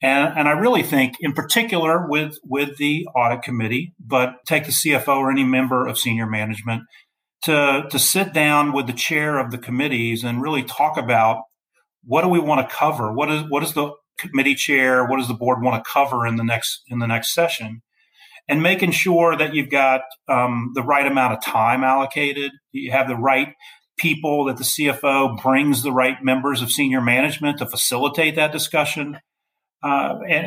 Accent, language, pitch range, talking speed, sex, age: American, English, 130-155 Hz, 195 wpm, male, 40-59